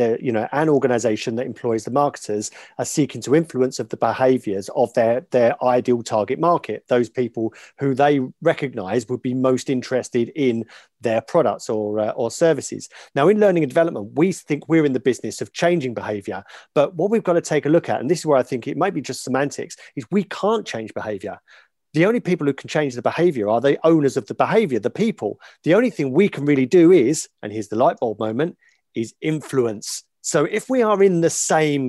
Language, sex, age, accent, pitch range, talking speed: English, male, 40-59, British, 125-165 Hz, 215 wpm